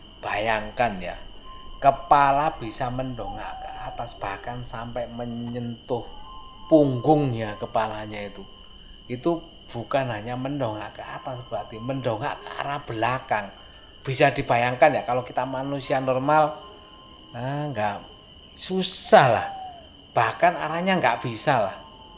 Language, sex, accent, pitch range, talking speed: Indonesian, male, native, 105-140 Hz, 110 wpm